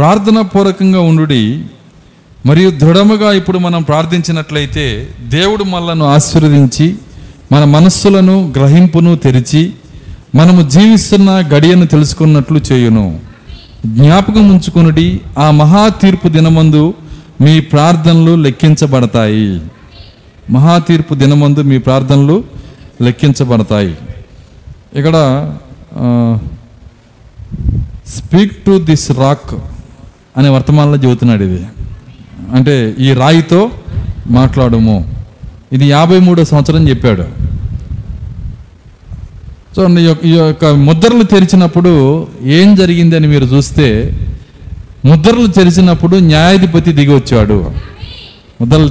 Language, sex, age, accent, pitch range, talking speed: Telugu, male, 50-69, native, 115-170 Hz, 80 wpm